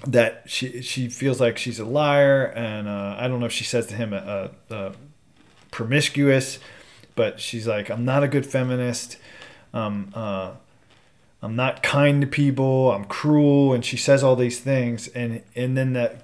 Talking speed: 175 wpm